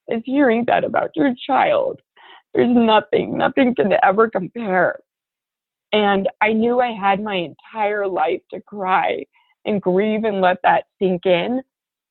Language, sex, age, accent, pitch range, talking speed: English, female, 30-49, American, 180-210 Hz, 145 wpm